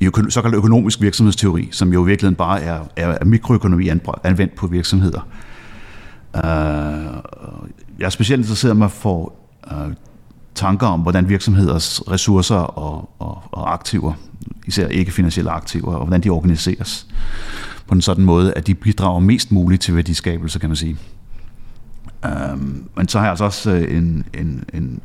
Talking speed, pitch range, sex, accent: 155 wpm, 85-100 Hz, male, native